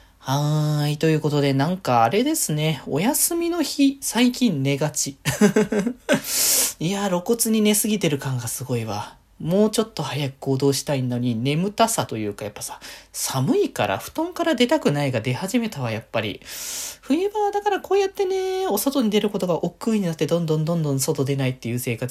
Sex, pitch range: male, 120-170 Hz